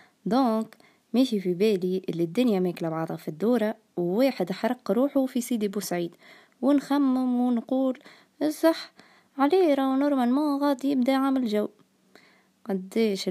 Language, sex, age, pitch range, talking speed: Arabic, female, 20-39, 185-235 Hz, 120 wpm